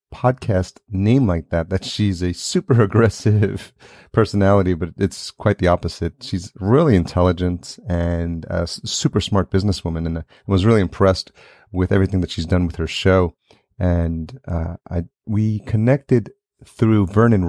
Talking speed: 145 wpm